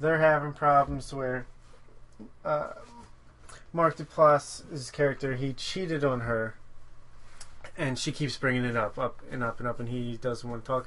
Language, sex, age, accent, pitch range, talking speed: English, male, 30-49, American, 125-145 Hz, 165 wpm